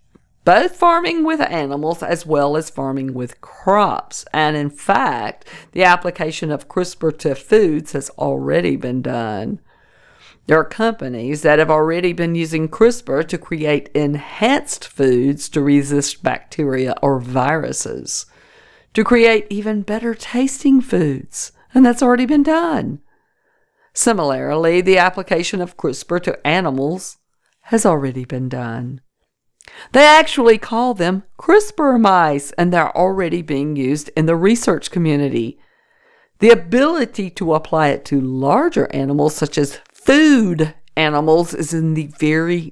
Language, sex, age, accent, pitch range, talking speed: English, female, 50-69, American, 145-210 Hz, 130 wpm